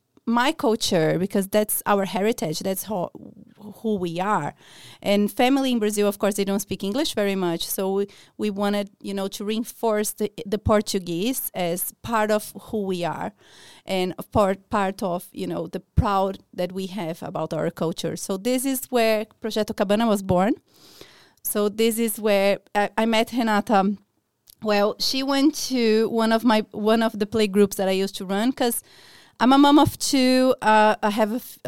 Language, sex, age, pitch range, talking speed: English, female, 30-49, 190-225 Hz, 180 wpm